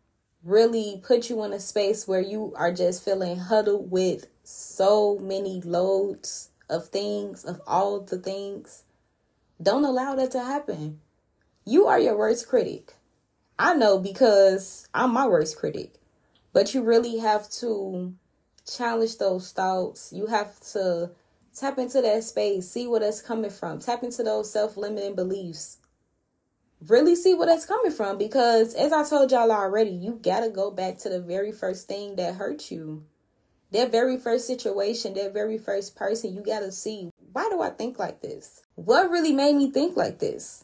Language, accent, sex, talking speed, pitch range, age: English, American, female, 170 wpm, 190-240 Hz, 20-39